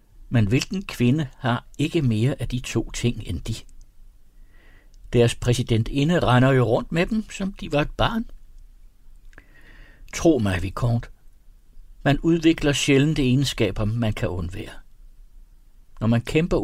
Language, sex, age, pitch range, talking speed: Danish, male, 60-79, 100-135 Hz, 135 wpm